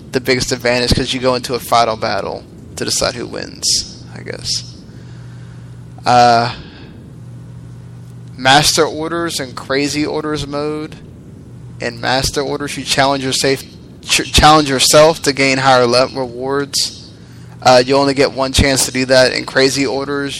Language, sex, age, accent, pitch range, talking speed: English, male, 10-29, American, 115-140 Hz, 135 wpm